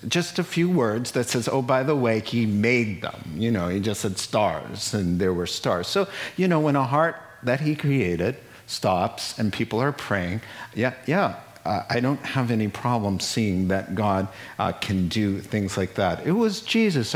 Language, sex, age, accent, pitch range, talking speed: English, male, 50-69, American, 95-130 Hz, 200 wpm